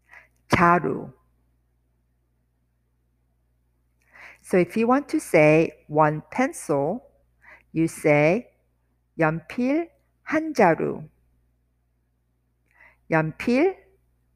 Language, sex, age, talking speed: English, female, 50-69, 65 wpm